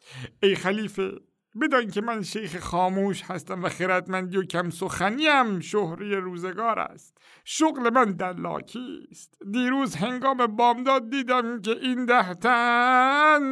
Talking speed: 120 wpm